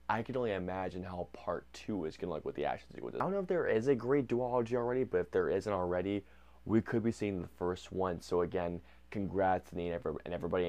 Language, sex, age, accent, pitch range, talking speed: English, male, 20-39, American, 95-125 Hz, 235 wpm